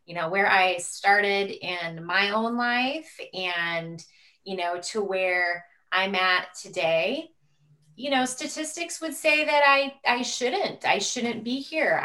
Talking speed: 150 wpm